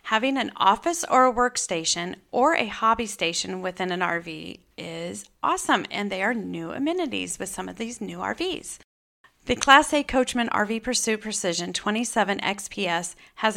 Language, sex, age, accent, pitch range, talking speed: English, female, 40-59, American, 180-235 Hz, 155 wpm